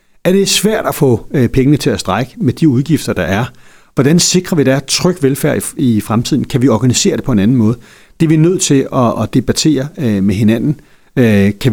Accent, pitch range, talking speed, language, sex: native, 115-155 Hz, 210 wpm, Danish, male